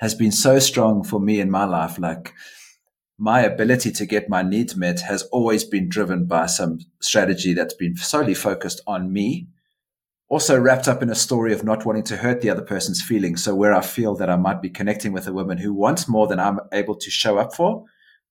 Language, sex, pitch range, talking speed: English, male, 100-125 Hz, 220 wpm